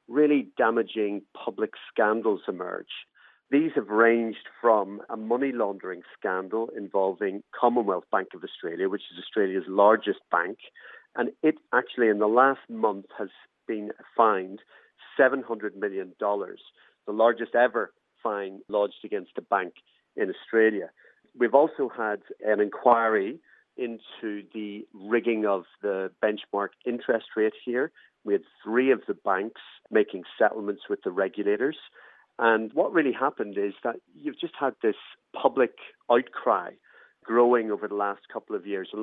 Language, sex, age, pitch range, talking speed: English, male, 40-59, 105-150 Hz, 140 wpm